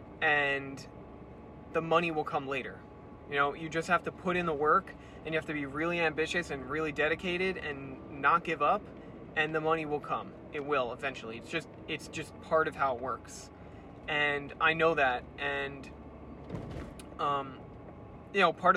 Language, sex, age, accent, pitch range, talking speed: English, male, 20-39, American, 135-155 Hz, 180 wpm